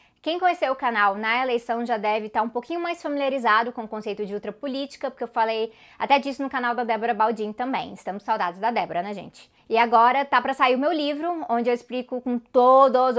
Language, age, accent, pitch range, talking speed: Portuguese, 20-39, Brazilian, 215-275 Hz, 225 wpm